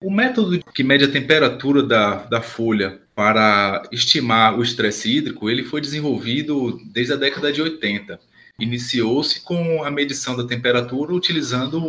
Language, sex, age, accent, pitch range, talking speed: Portuguese, male, 20-39, Brazilian, 110-145 Hz, 145 wpm